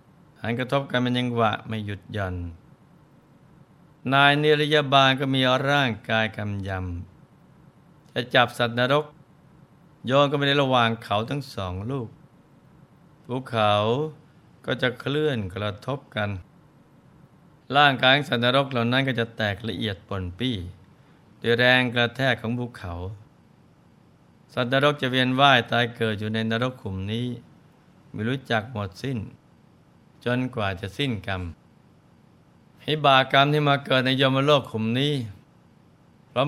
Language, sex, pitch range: Thai, male, 110-140 Hz